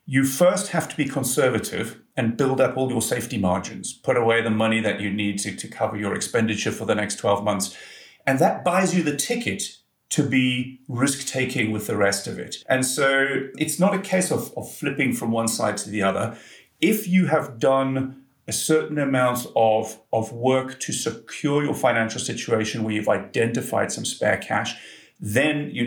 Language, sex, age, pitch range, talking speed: English, male, 40-59, 115-155 Hz, 190 wpm